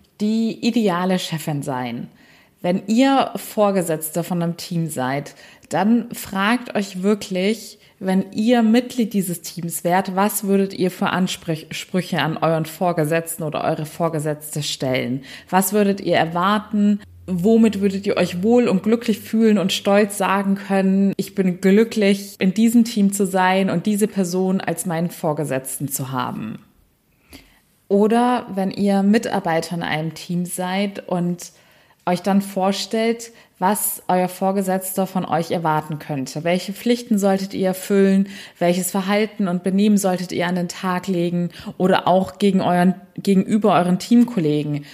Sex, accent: female, German